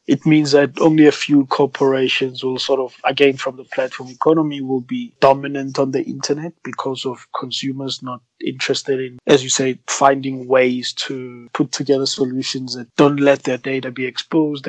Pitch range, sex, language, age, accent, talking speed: 130-145 Hz, male, English, 20-39, South African, 175 wpm